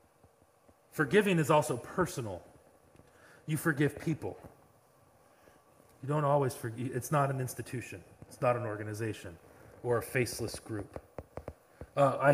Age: 30-49